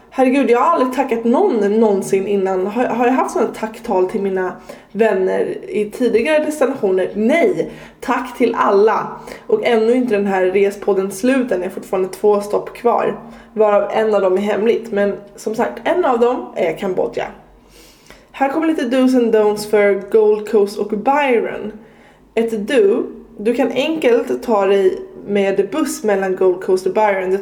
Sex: female